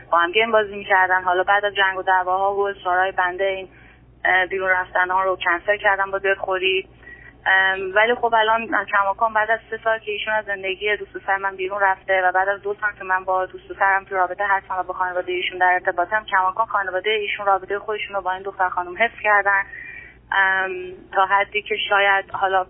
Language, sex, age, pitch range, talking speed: Persian, female, 30-49, 190-210 Hz, 210 wpm